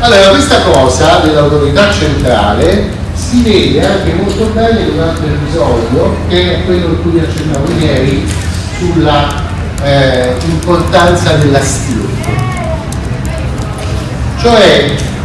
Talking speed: 105 wpm